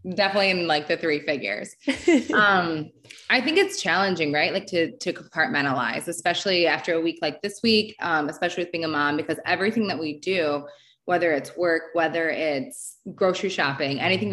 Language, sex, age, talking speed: English, female, 20-39, 175 wpm